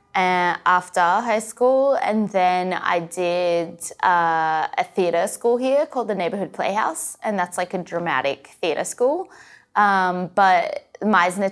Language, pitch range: English, 180-245 Hz